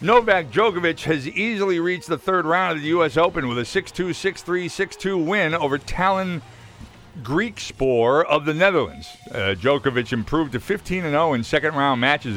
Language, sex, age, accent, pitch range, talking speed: English, male, 50-69, American, 115-170 Hz, 160 wpm